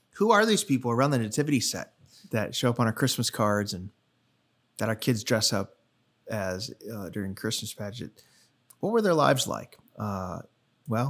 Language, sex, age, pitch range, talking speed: English, male, 30-49, 105-130 Hz, 180 wpm